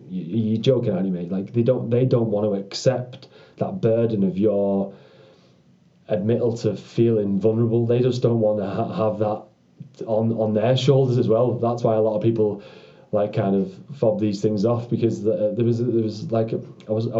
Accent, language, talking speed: British, English, 205 wpm